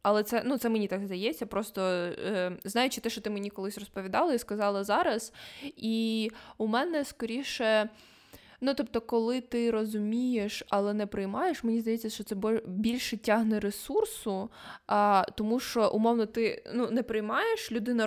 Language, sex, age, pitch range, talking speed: Ukrainian, female, 20-39, 205-250 Hz, 150 wpm